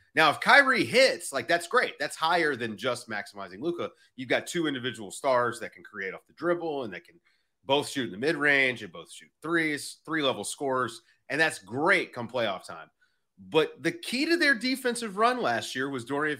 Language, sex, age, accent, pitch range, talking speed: English, male, 30-49, American, 105-160 Hz, 200 wpm